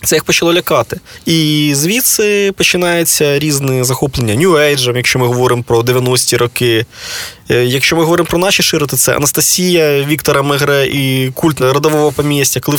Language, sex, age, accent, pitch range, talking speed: Ukrainian, male, 20-39, native, 125-155 Hz, 145 wpm